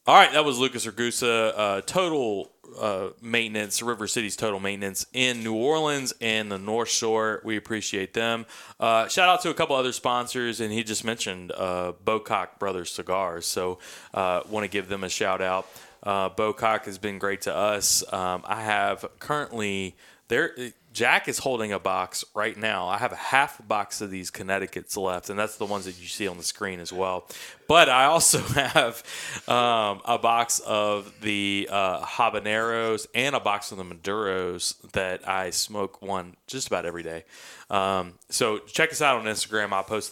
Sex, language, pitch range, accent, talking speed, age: male, English, 100-120 Hz, American, 180 wpm, 30-49